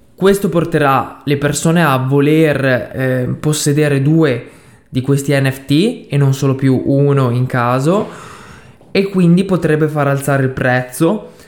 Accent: native